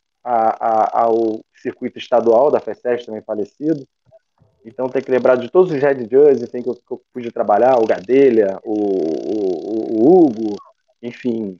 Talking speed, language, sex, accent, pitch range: 160 wpm, Portuguese, male, Brazilian, 120-140 Hz